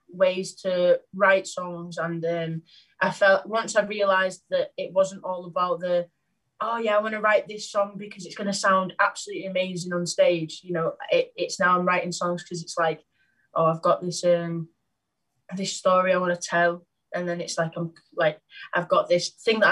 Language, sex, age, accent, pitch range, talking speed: English, female, 20-39, British, 170-195 Hz, 205 wpm